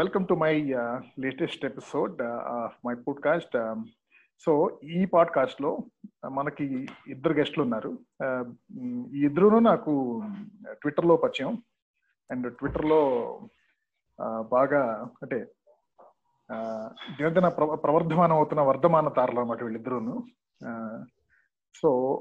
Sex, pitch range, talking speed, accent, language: male, 130-175 Hz, 90 wpm, native, Telugu